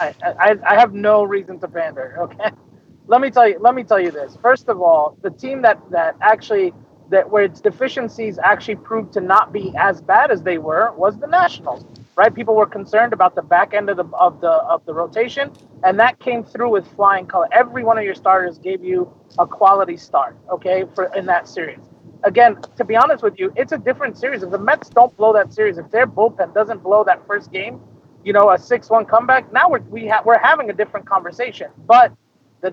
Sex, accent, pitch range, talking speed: male, American, 185-240 Hz, 220 wpm